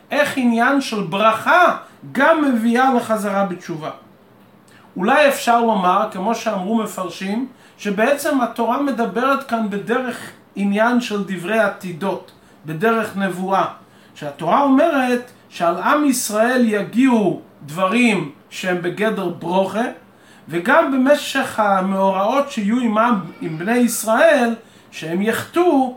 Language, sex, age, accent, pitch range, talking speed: Hebrew, male, 40-59, native, 200-255 Hz, 105 wpm